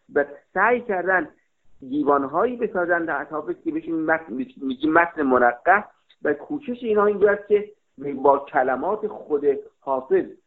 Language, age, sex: Persian, 50-69, male